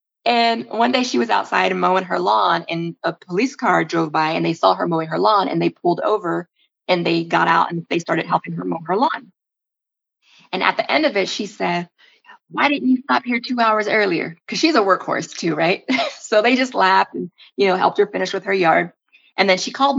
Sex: female